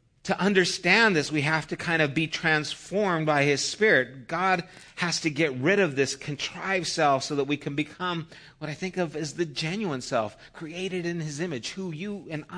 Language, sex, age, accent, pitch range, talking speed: English, male, 50-69, American, 125-160 Hz, 200 wpm